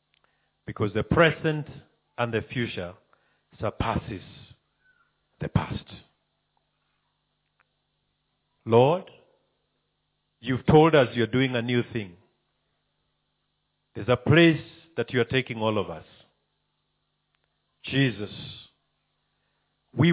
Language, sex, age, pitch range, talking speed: English, male, 50-69, 110-165 Hz, 85 wpm